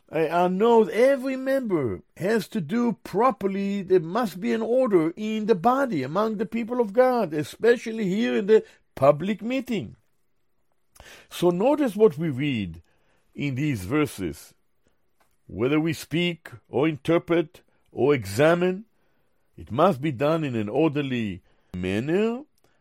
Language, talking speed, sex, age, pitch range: English, 130 wpm, male, 60-79, 150-220 Hz